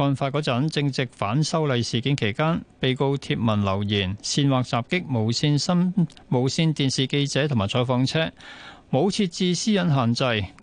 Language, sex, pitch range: Chinese, male, 115-155 Hz